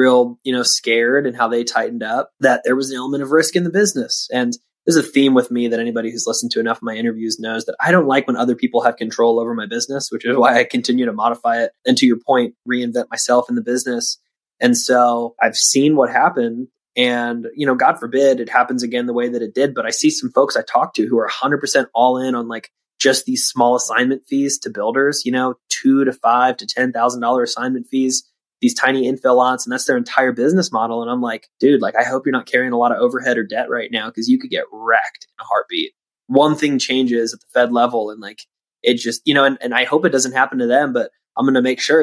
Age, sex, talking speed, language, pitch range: 20-39, male, 255 wpm, English, 120-140 Hz